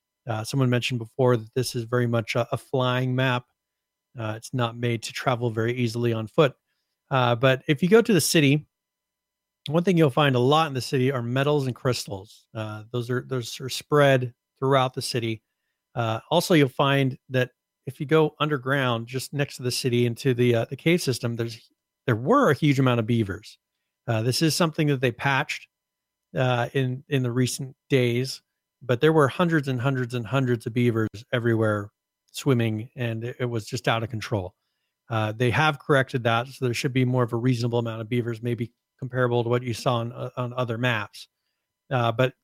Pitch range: 120-140 Hz